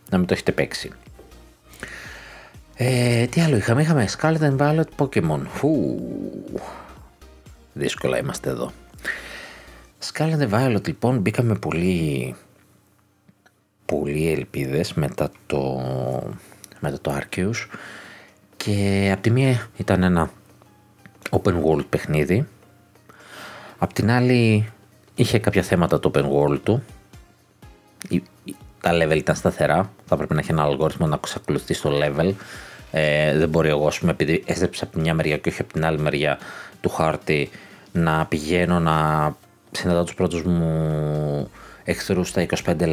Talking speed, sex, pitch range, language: 130 wpm, male, 75-105 Hz, Greek